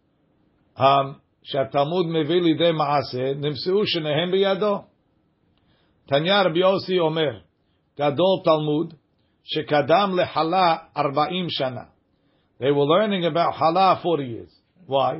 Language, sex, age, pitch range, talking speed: English, male, 50-69, 145-180 Hz, 45 wpm